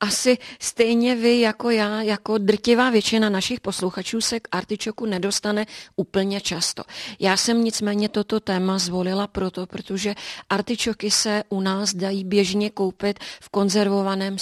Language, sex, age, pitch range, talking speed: Czech, female, 30-49, 185-210 Hz, 135 wpm